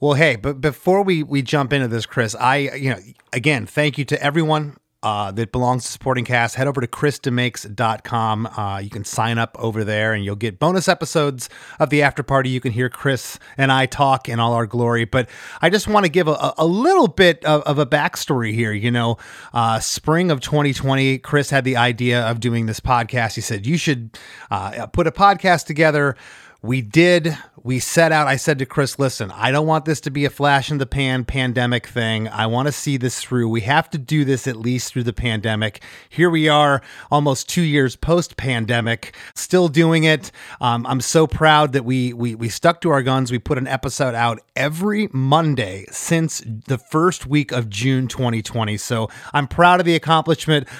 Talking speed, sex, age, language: 205 wpm, male, 30-49, English